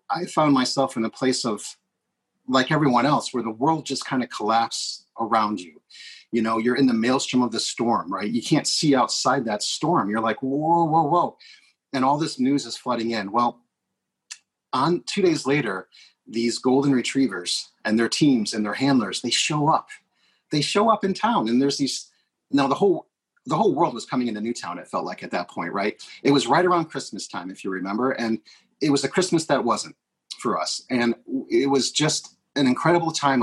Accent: American